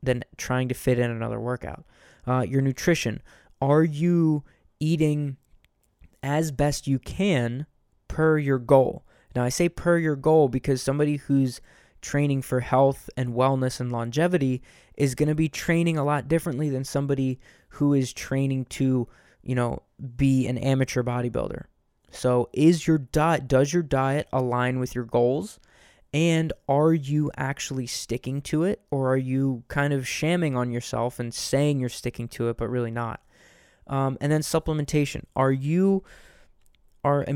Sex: male